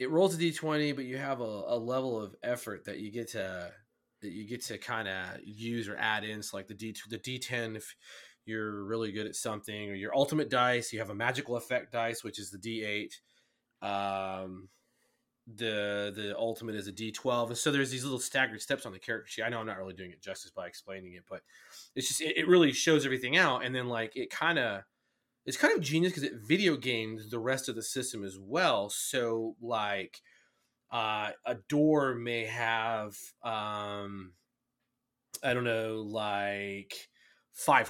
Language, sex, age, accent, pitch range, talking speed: English, male, 30-49, American, 105-125 Hz, 195 wpm